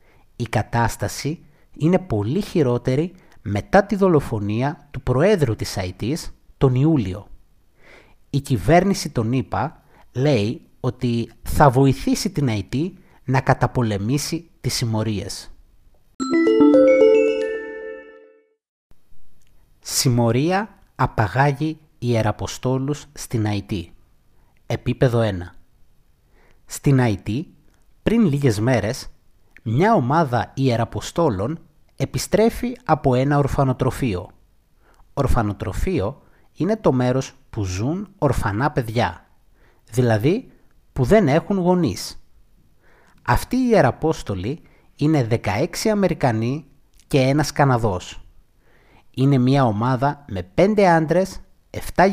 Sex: male